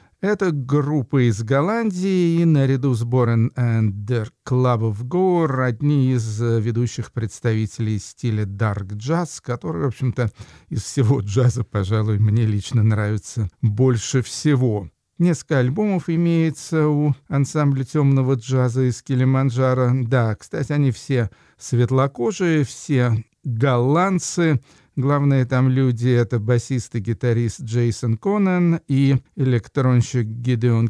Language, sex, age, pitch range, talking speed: Russian, male, 50-69, 115-145 Hz, 115 wpm